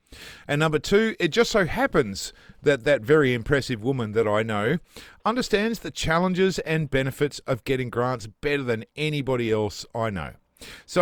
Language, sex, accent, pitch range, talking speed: English, male, Australian, 115-155 Hz, 165 wpm